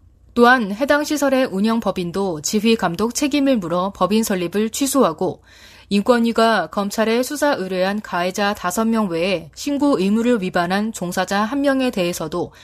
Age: 20-39